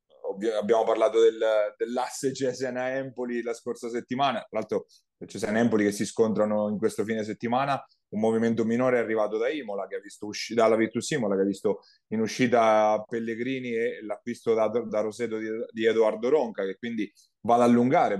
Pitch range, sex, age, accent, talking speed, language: 105-130 Hz, male, 30-49, native, 170 wpm, Italian